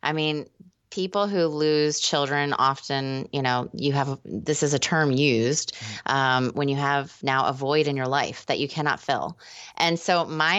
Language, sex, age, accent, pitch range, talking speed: English, female, 20-39, American, 135-155 Hz, 185 wpm